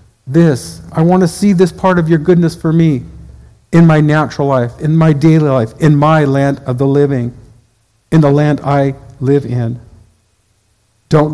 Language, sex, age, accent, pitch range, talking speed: English, male, 50-69, American, 115-160 Hz, 175 wpm